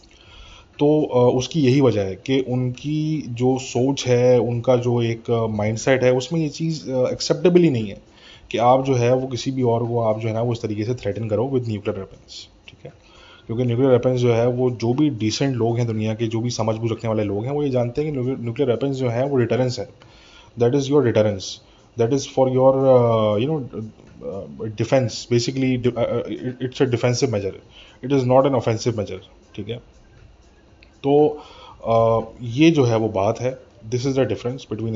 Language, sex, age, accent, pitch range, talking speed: English, male, 20-39, Indian, 110-130 Hz, 115 wpm